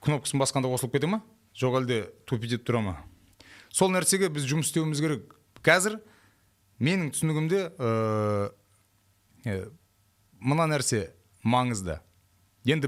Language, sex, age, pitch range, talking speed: Russian, male, 30-49, 100-145 Hz, 90 wpm